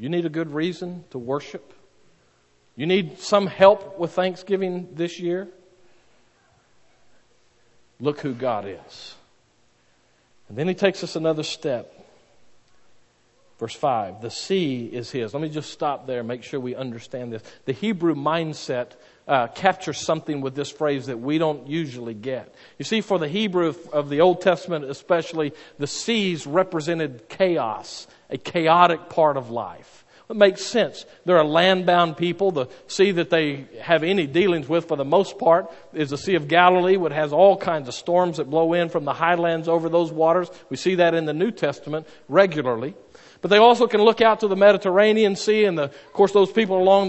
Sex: male